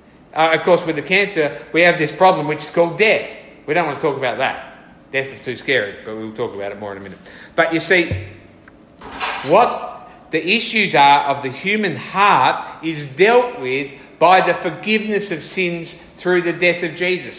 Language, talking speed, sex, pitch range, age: English, 200 wpm, male, 140-185 Hz, 50-69